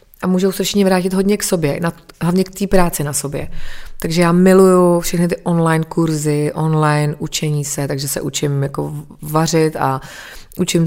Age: 30-49